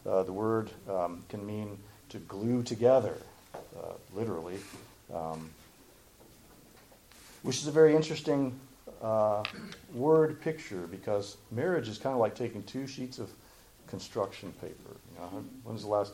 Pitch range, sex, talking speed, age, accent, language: 95-125 Hz, male, 135 wpm, 50-69, American, English